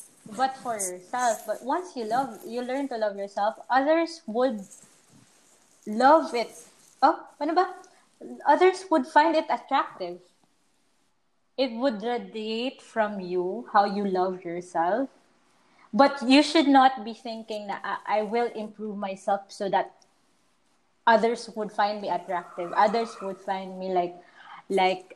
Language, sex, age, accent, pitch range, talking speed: English, female, 20-39, Filipino, 195-260 Hz, 135 wpm